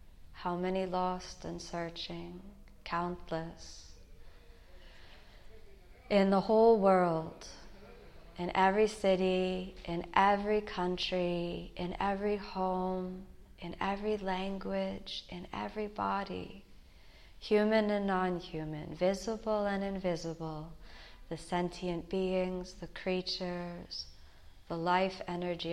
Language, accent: English, American